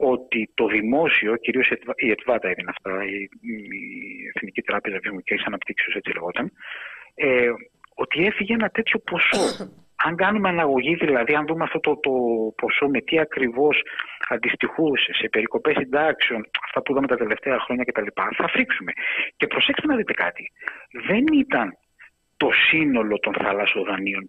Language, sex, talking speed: Greek, male, 145 wpm